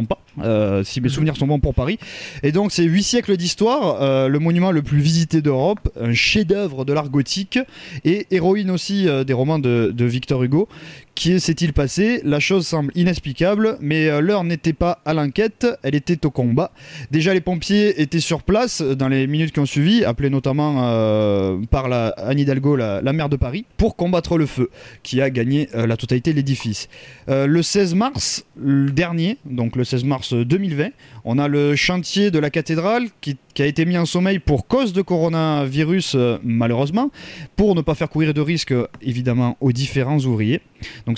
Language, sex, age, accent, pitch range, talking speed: French, male, 20-39, French, 135-185 Hz, 190 wpm